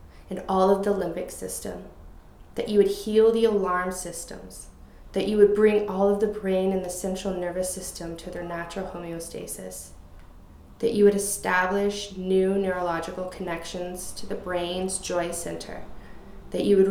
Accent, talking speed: American, 160 wpm